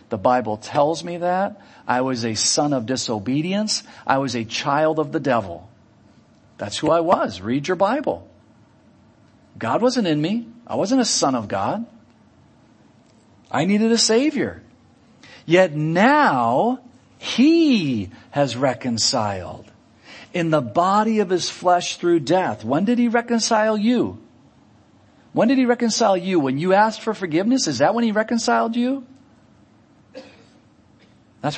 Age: 50-69